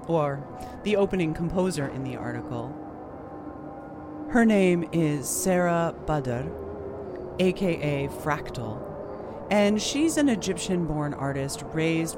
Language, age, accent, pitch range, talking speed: English, 40-59, American, 140-190 Hz, 100 wpm